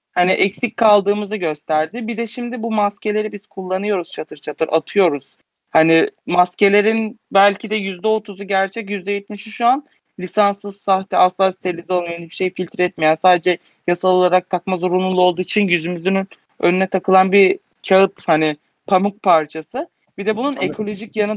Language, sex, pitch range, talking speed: Turkish, male, 175-200 Hz, 145 wpm